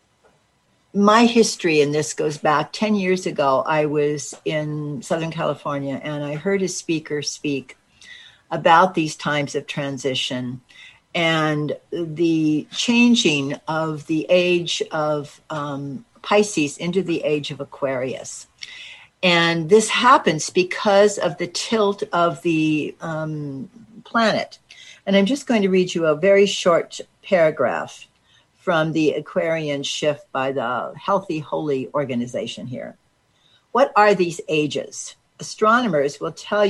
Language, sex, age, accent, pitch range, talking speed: English, female, 60-79, American, 150-195 Hz, 130 wpm